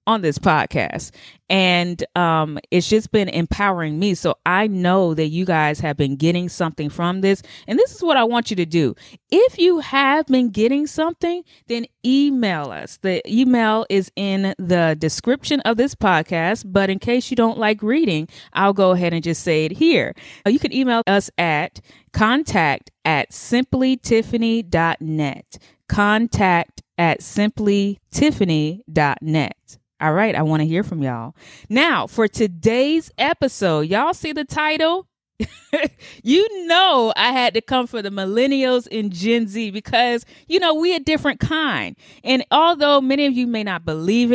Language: English